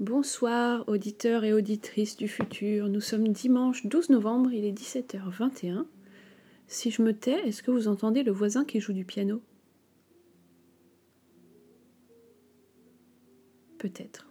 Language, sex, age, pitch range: French, female, 30-49, 200-240 Hz